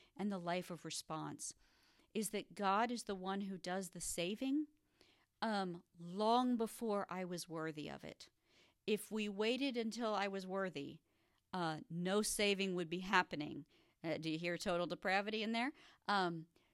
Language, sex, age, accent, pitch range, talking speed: English, female, 50-69, American, 175-225 Hz, 160 wpm